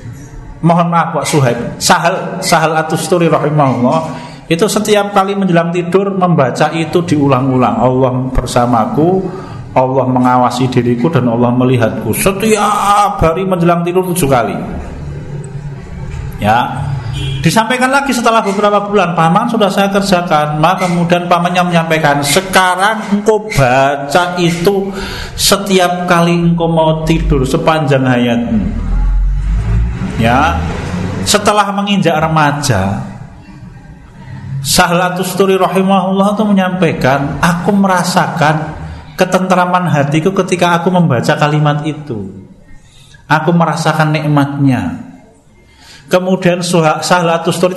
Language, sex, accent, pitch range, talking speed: Indonesian, male, native, 140-185 Hz, 90 wpm